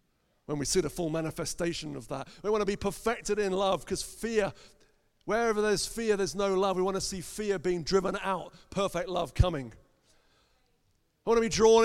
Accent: British